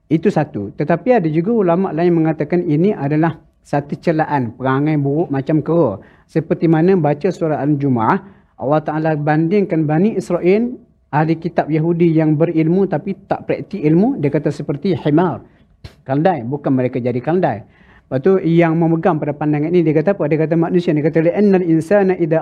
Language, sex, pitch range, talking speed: Malayalam, male, 150-175 Hz, 160 wpm